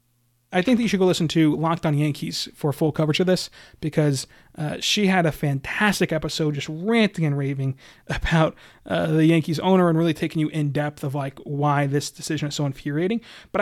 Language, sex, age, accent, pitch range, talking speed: English, male, 30-49, American, 145-180 Hz, 205 wpm